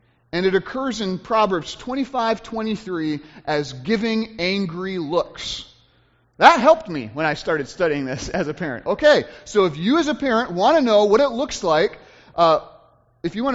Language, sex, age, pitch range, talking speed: English, male, 30-49, 155-225 Hz, 175 wpm